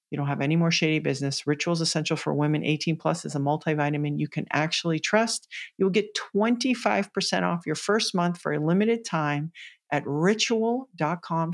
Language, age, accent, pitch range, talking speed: English, 50-69, American, 145-195 Hz, 175 wpm